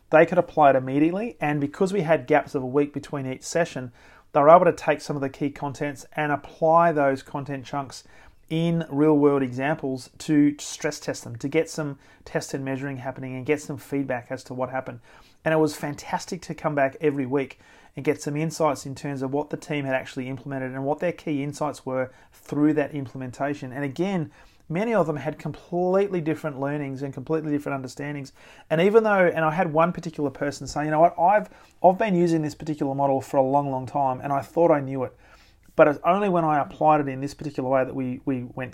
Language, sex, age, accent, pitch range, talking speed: English, male, 30-49, Australian, 135-160 Hz, 220 wpm